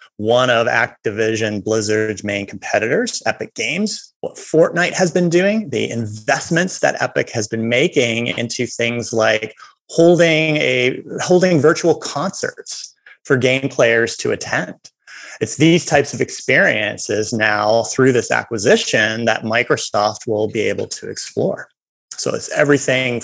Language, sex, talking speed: English, male, 135 wpm